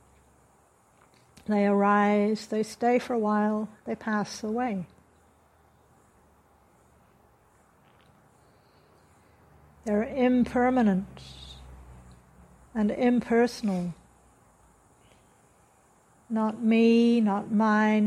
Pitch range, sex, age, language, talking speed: 195-230 Hz, female, 60-79, English, 60 wpm